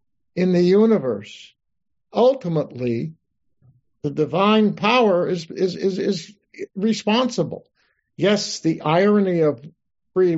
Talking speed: 100 wpm